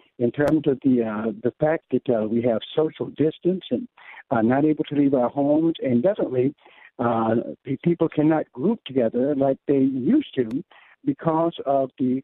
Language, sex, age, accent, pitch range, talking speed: English, male, 60-79, American, 135-180 Hz, 170 wpm